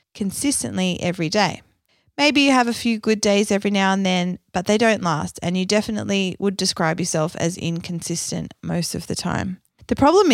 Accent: Australian